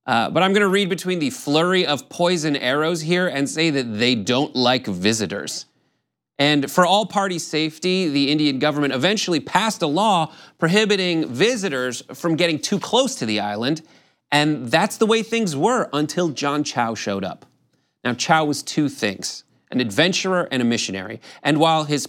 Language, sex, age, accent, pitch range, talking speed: English, male, 30-49, American, 130-175 Hz, 175 wpm